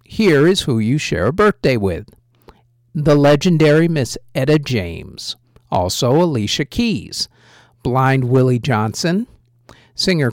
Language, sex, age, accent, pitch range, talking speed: English, male, 50-69, American, 120-175 Hz, 115 wpm